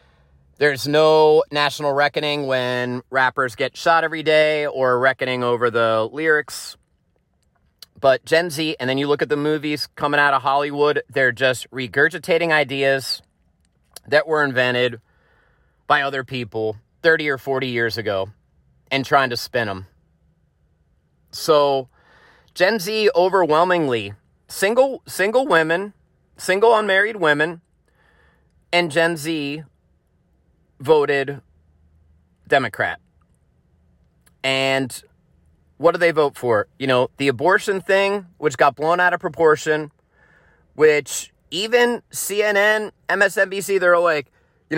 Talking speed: 120 wpm